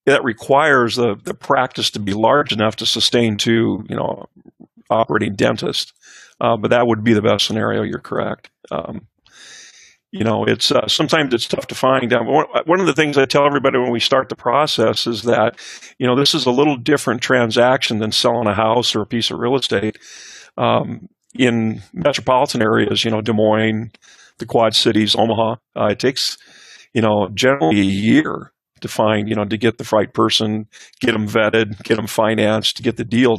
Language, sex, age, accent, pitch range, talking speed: English, male, 50-69, American, 110-130 Hz, 195 wpm